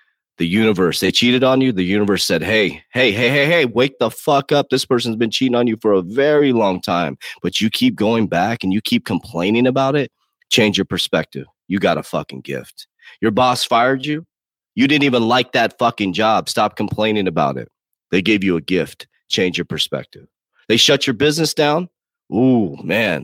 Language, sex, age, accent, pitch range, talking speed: English, male, 30-49, American, 105-135 Hz, 200 wpm